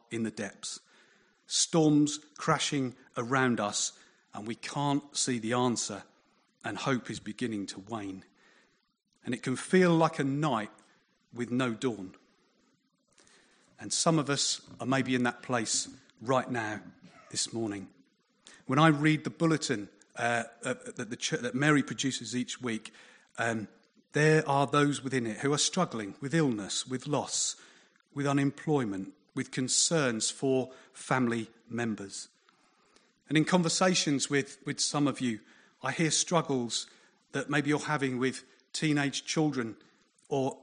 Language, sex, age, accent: English, male, 40-59, British